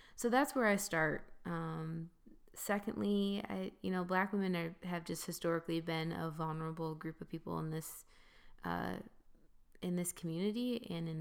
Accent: American